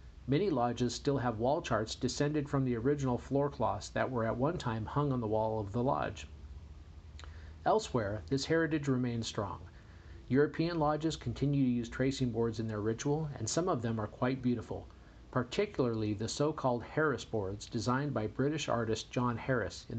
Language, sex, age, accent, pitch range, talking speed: English, male, 50-69, American, 110-135 Hz, 175 wpm